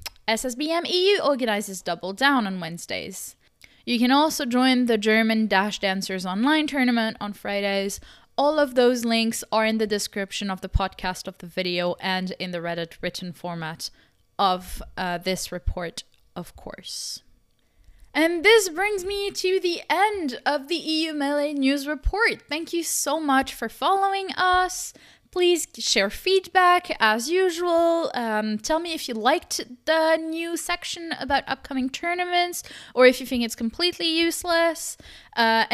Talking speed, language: 150 wpm, English